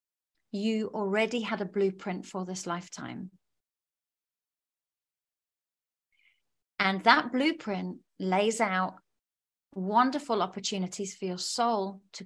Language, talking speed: English, 95 wpm